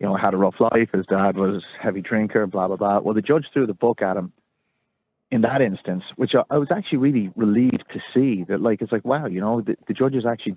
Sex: male